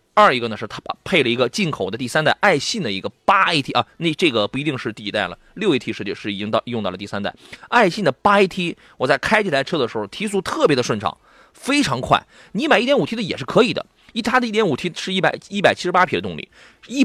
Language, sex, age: Chinese, male, 30-49